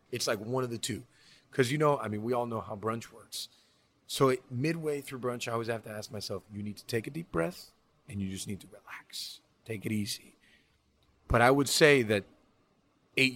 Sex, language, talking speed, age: male, English, 220 wpm, 30-49